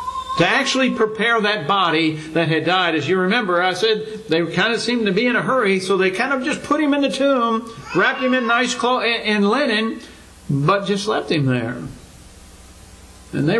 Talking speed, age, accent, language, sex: 205 wpm, 60-79, American, English, male